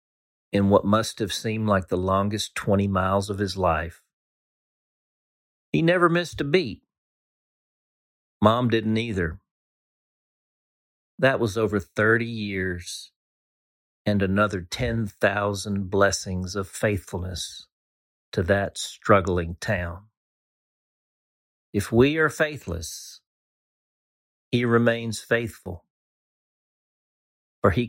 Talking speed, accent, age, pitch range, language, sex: 95 wpm, American, 50-69, 90-120 Hz, English, male